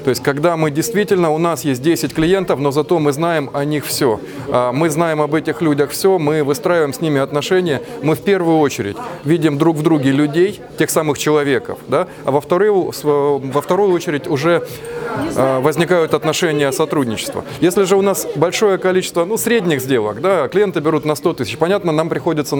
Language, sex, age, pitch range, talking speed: Russian, male, 20-39, 145-180 Hz, 185 wpm